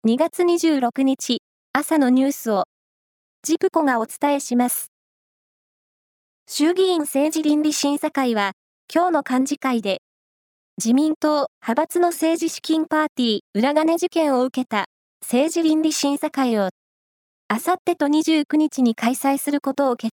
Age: 20-39